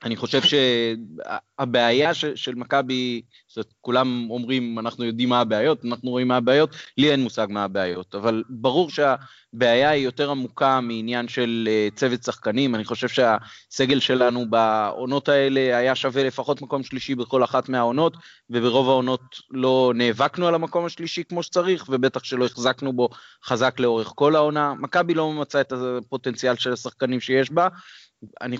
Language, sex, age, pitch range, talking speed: Hebrew, male, 30-49, 125-155 Hz, 155 wpm